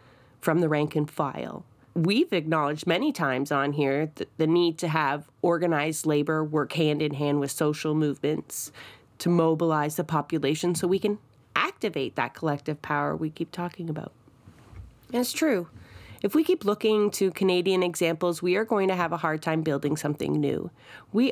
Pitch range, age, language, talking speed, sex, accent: 150-180 Hz, 30-49, English, 175 wpm, female, American